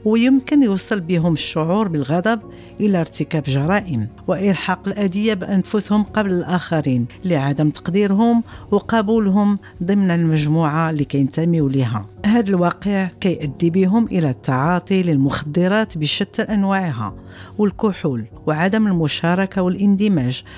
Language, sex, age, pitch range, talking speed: French, female, 50-69, 155-210 Hz, 100 wpm